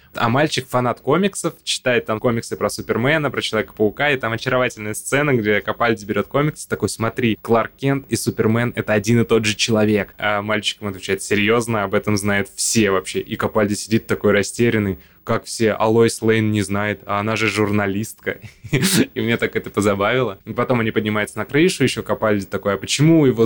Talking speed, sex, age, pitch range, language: 185 wpm, male, 20-39, 100-120 Hz, Russian